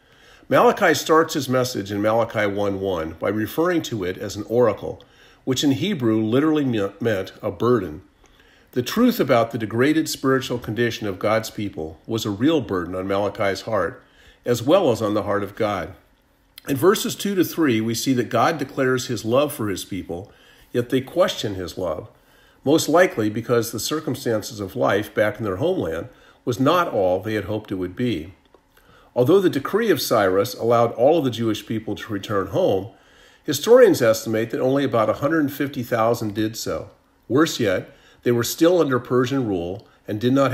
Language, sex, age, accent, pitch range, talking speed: English, male, 50-69, American, 105-135 Hz, 175 wpm